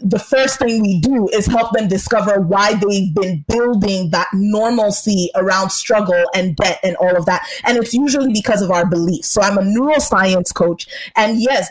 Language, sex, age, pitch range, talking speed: English, female, 20-39, 200-255 Hz, 190 wpm